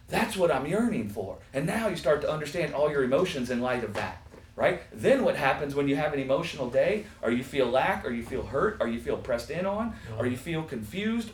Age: 30-49